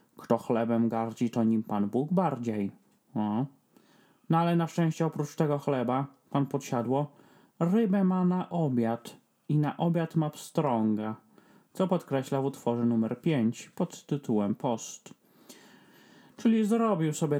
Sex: male